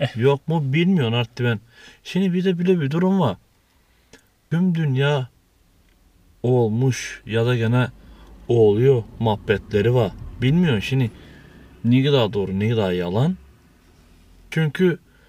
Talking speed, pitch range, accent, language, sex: 120 wpm, 100-135 Hz, native, Turkish, male